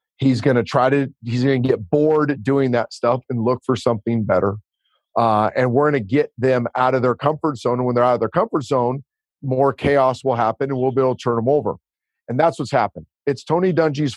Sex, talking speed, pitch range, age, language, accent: male, 240 wpm, 120-145 Hz, 40-59, English, American